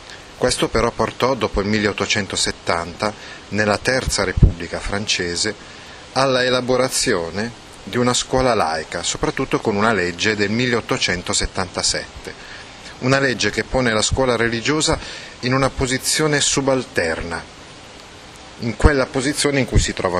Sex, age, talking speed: male, 30-49, 120 wpm